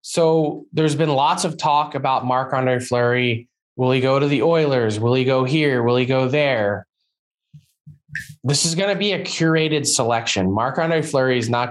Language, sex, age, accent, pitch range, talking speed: English, male, 20-39, American, 115-140 Hz, 180 wpm